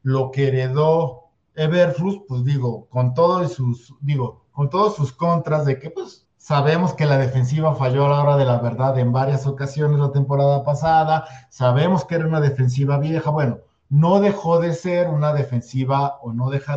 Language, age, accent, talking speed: Spanish, 50-69, Mexican, 170 wpm